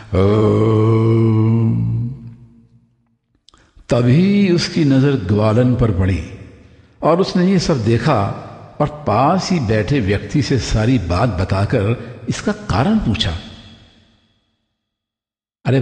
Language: Hindi